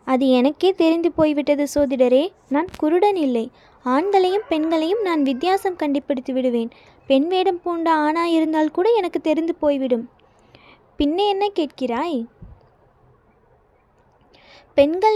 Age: 20-39